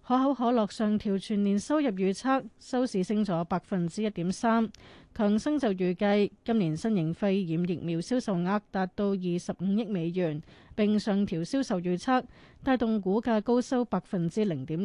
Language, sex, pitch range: Chinese, female, 180-220 Hz